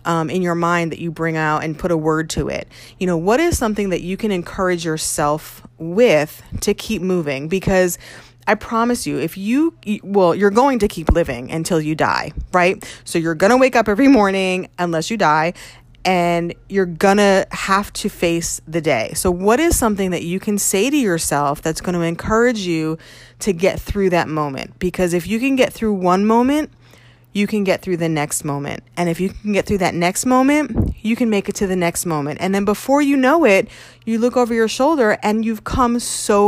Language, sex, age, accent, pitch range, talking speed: English, female, 30-49, American, 165-225 Hz, 210 wpm